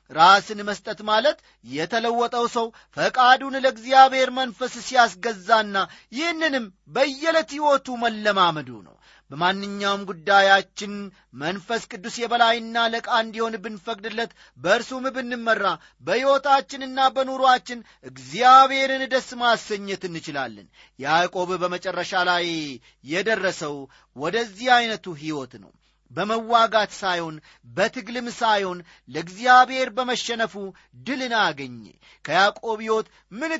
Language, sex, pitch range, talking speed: Amharic, male, 180-235 Hz, 90 wpm